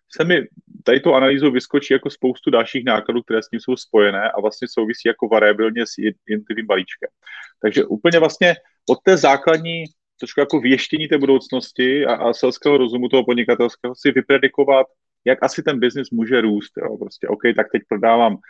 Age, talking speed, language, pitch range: 30-49, 175 wpm, Czech, 115-150 Hz